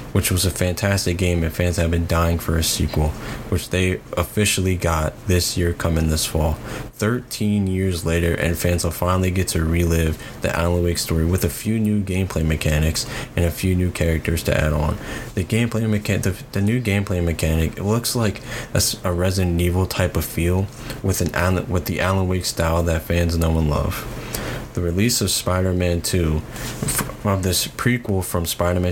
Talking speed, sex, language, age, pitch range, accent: 185 wpm, male, English, 20-39, 85-105 Hz, American